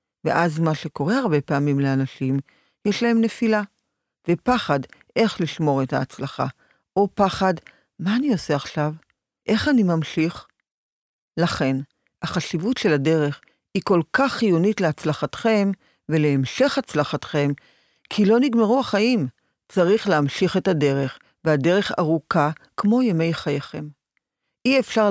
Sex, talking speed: female, 115 wpm